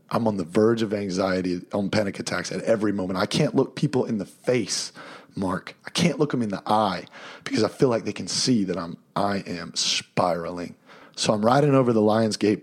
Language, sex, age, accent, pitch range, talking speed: English, male, 30-49, American, 95-110 Hz, 220 wpm